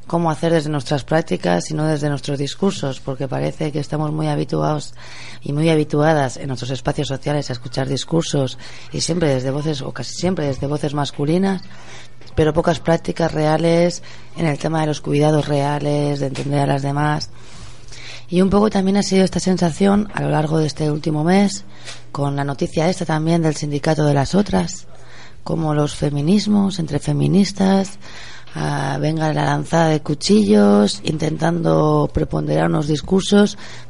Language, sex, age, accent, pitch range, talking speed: Spanish, female, 30-49, Spanish, 135-165 Hz, 160 wpm